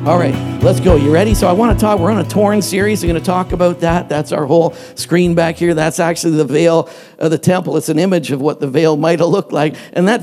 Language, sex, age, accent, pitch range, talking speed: English, male, 50-69, American, 145-180 Hz, 280 wpm